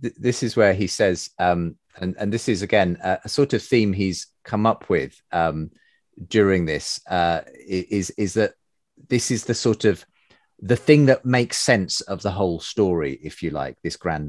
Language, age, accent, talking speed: English, 30-49, British, 190 wpm